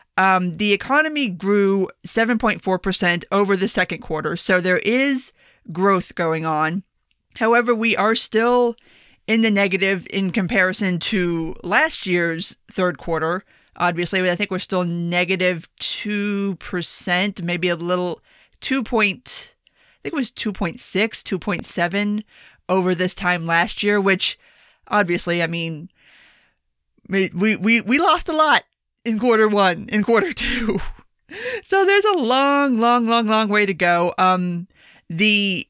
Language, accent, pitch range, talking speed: English, American, 180-220 Hz, 135 wpm